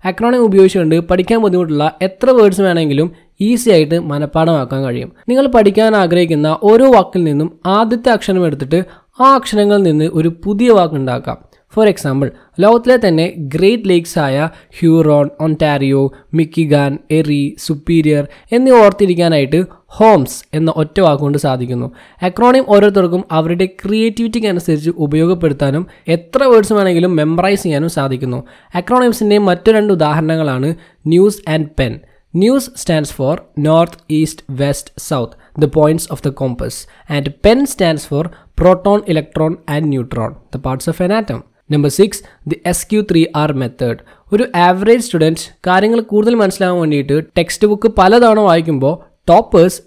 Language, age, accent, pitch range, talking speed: Malayalam, 20-39, native, 150-205 Hz, 145 wpm